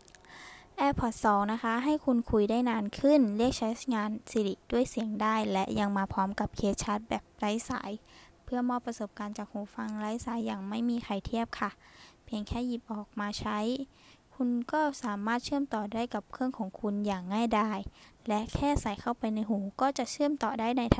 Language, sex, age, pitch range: Thai, female, 10-29, 205-240 Hz